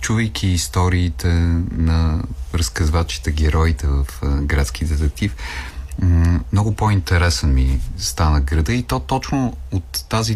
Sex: male